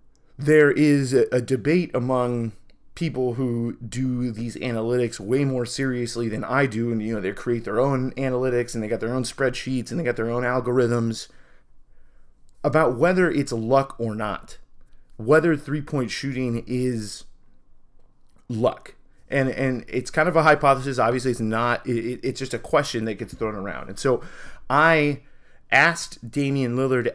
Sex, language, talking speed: male, English, 160 wpm